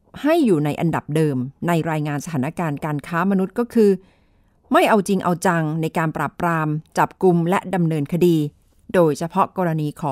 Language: Thai